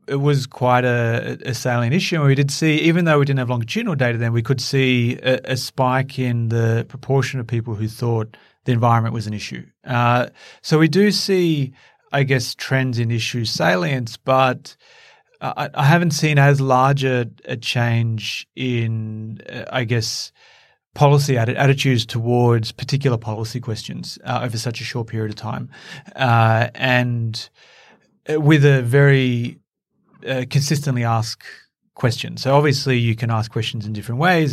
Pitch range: 115-140 Hz